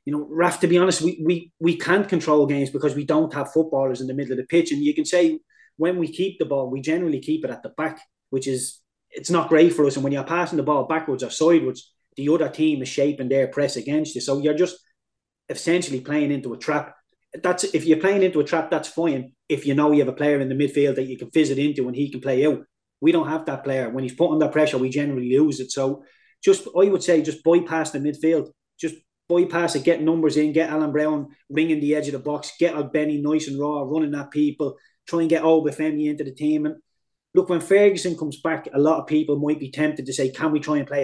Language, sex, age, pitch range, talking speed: English, male, 20-39, 140-165 Hz, 255 wpm